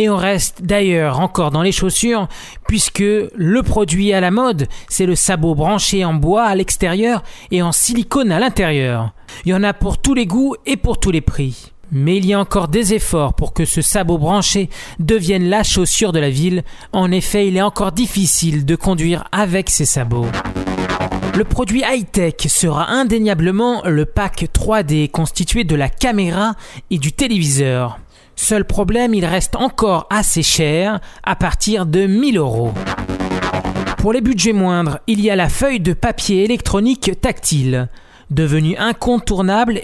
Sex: male